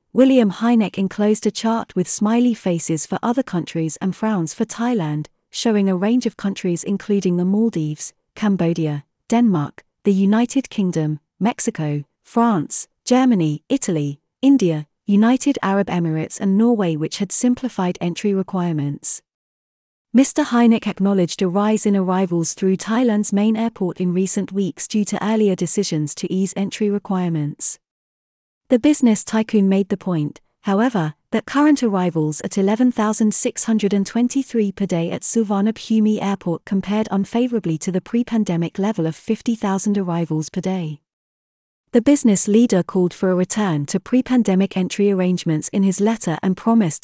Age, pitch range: 40-59, 175-225 Hz